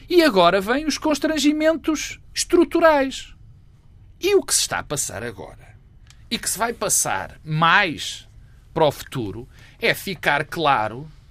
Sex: male